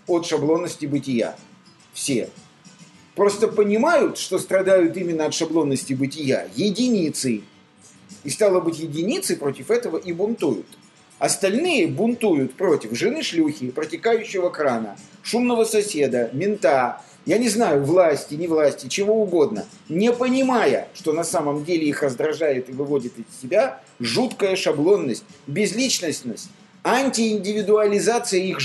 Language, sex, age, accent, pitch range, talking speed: Russian, male, 50-69, native, 155-220 Hz, 115 wpm